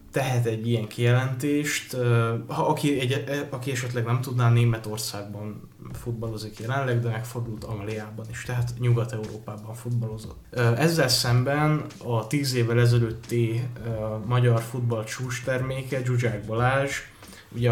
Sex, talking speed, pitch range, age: male, 105 wpm, 110-125 Hz, 20-39